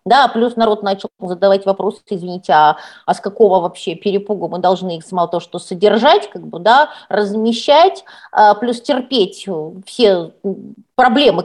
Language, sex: Russian, female